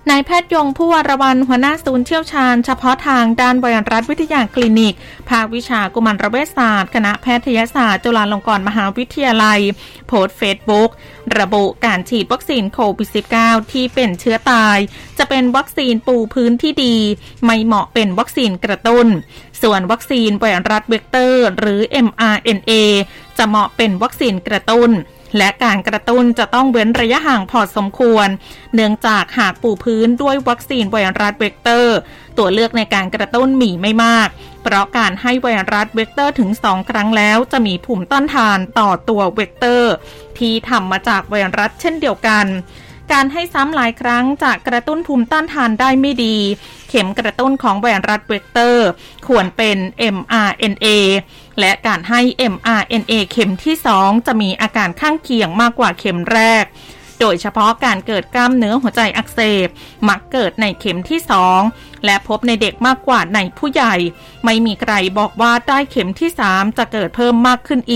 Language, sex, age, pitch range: Thai, female, 20-39, 205-250 Hz